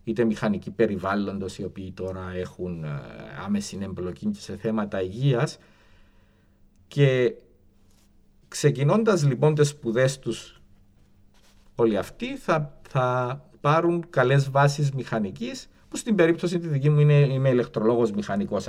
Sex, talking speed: male, 110 wpm